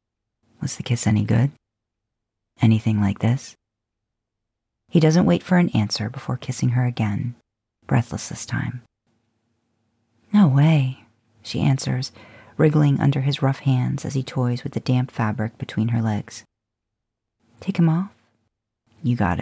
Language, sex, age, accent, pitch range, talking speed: English, female, 40-59, American, 110-135 Hz, 140 wpm